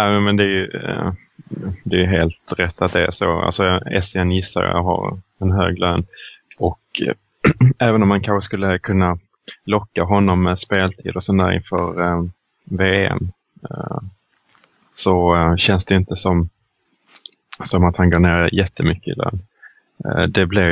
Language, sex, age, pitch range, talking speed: Swedish, male, 20-39, 85-95 Hz, 155 wpm